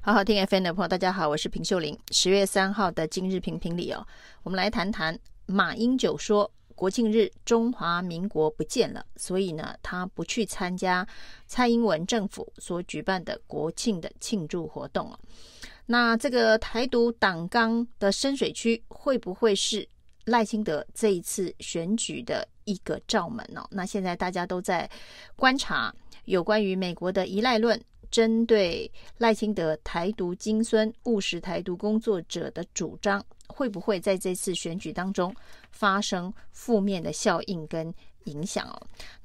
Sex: female